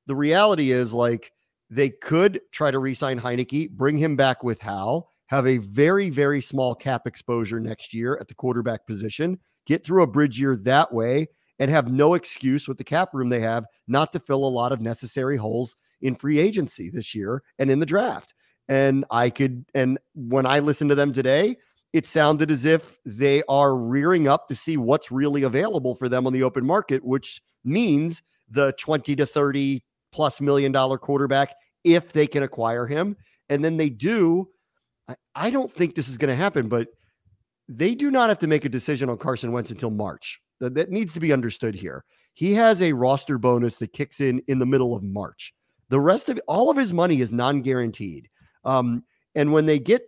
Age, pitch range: 40-59, 125-155 Hz